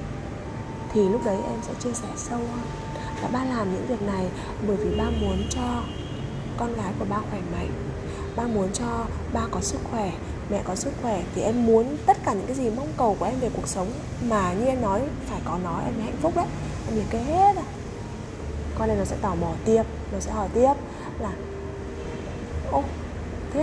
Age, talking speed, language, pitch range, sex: 20-39, 210 wpm, Vietnamese, 215-275 Hz, female